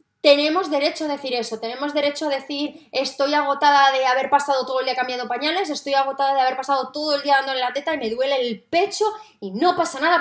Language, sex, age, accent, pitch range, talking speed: Spanish, female, 20-39, Spanish, 235-310 Hz, 235 wpm